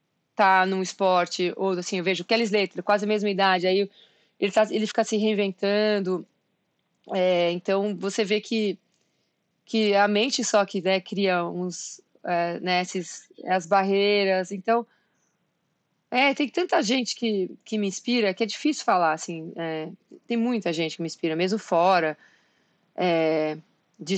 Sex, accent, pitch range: female, Brazilian, 190-235 Hz